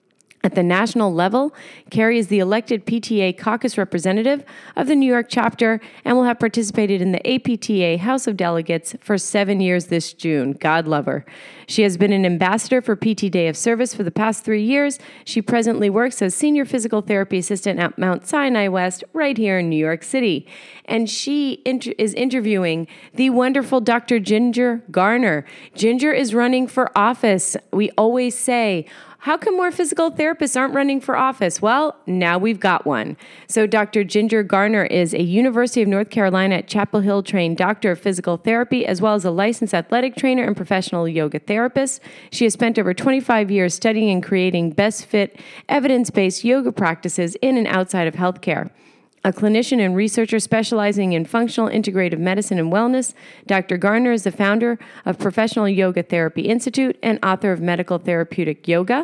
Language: English